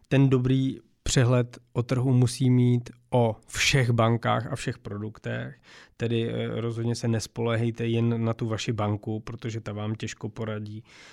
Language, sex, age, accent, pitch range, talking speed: Czech, male, 20-39, native, 110-120 Hz, 145 wpm